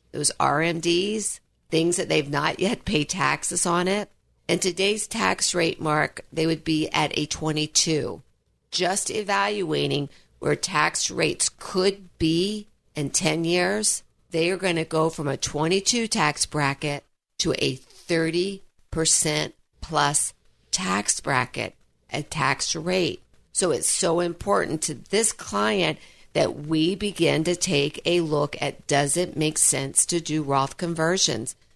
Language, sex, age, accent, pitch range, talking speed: English, female, 50-69, American, 155-185 Hz, 140 wpm